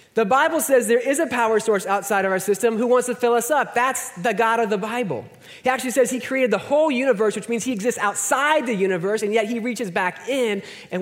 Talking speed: 250 wpm